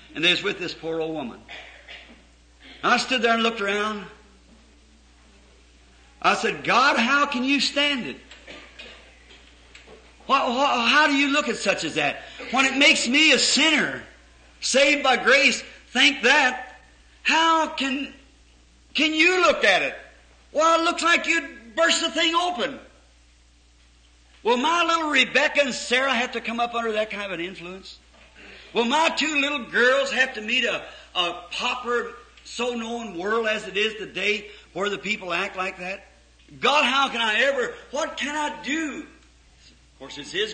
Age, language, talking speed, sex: 50-69, English, 165 wpm, male